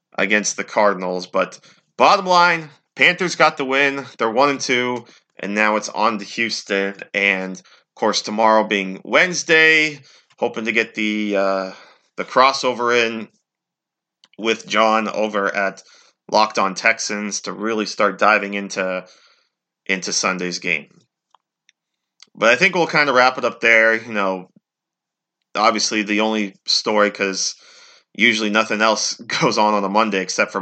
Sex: male